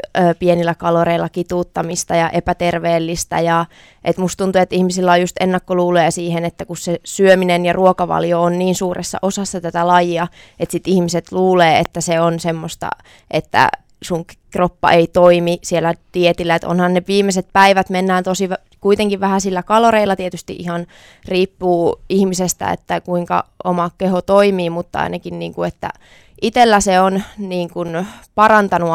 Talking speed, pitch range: 145 wpm, 170-185 Hz